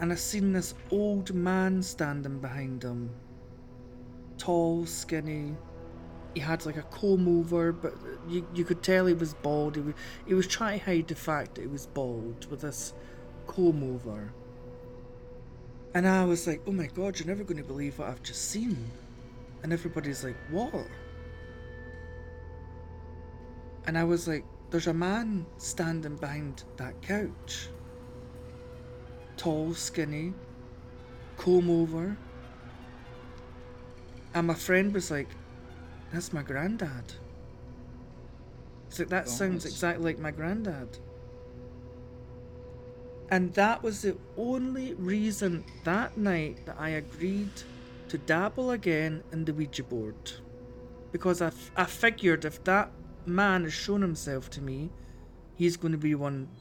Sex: male